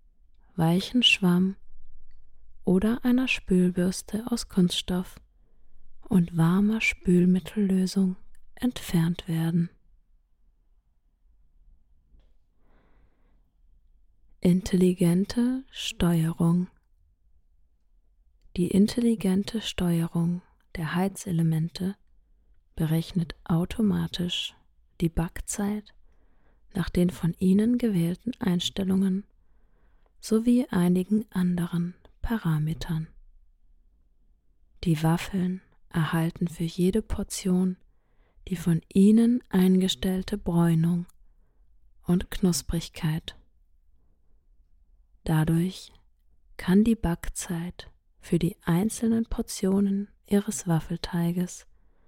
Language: German